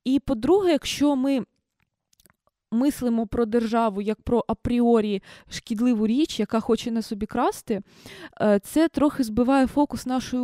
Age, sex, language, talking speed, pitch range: 20-39, female, Ukrainian, 125 wpm, 220-270 Hz